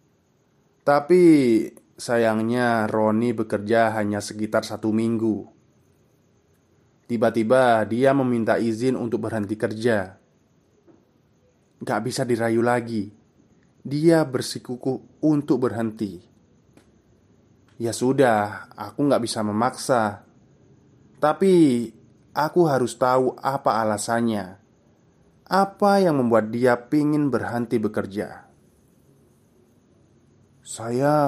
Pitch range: 110-140 Hz